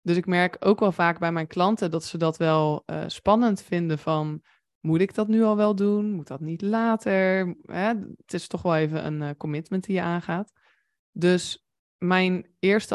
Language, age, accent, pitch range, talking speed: Dutch, 20-39, Dutch, 165-190 Hz, 200 wpm